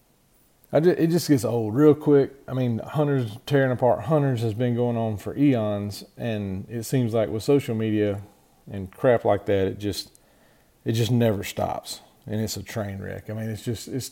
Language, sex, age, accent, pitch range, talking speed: English, male, 40-59, American, 105-130 Hz, 200 wpm